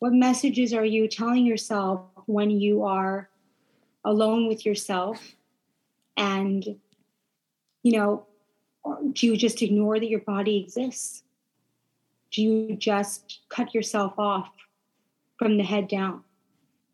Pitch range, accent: 200-230 Hz, American